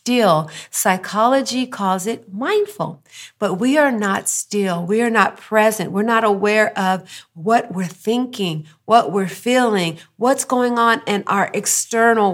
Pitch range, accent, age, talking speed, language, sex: 190-250 Hz, American, 50-69, 145 wpm, English, female